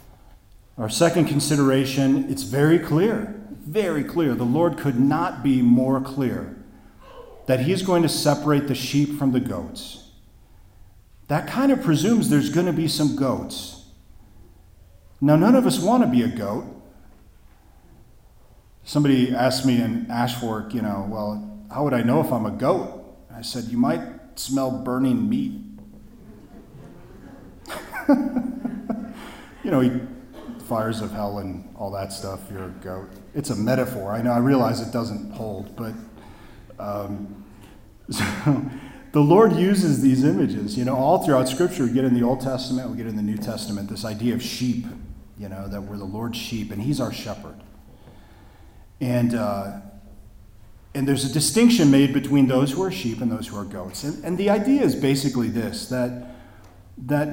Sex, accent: male, American